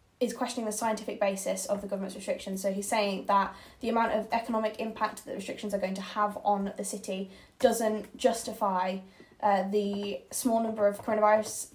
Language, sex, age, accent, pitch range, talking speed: English, female, 10-29, British, 200-230 Hz, 180 wpm